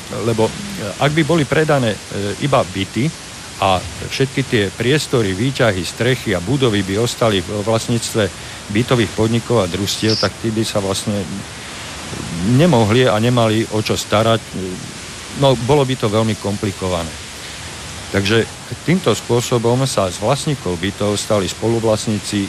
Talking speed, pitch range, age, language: 130 wpm, 95-120 Hz, 50-69, Slovak